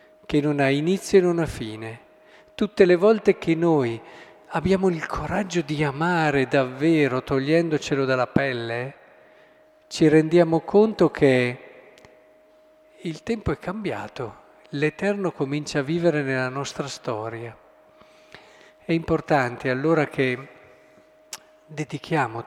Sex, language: male, Italian